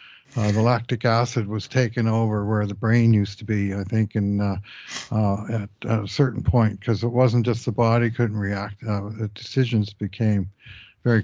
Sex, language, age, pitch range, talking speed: male, English, 60-79, 105-125 Hz, 190 wpm